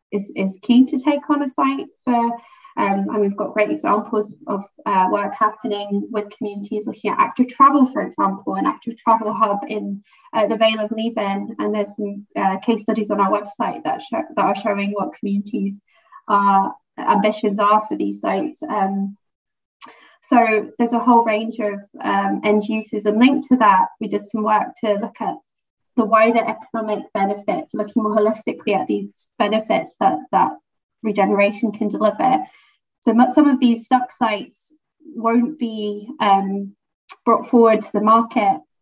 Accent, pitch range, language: British, 200-240 Hz, English